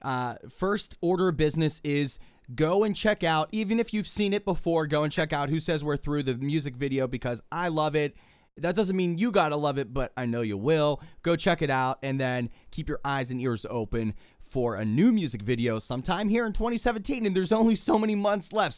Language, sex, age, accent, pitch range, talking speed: English, male, 30-49, American, 130-195 Hz, 230 wpm